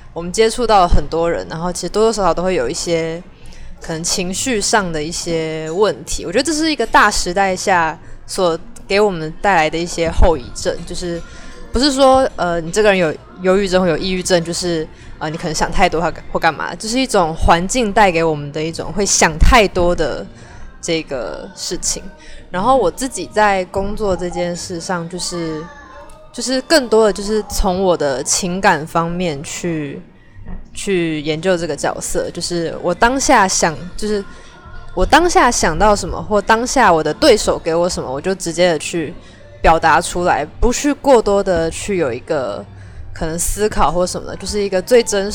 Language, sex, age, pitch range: Chinese, female, 20-39, 165-210 Hz